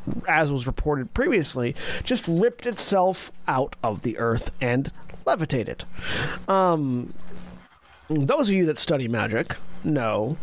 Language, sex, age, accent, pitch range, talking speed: English, male, 40-59, American, 130-190 Hz, 120 wpm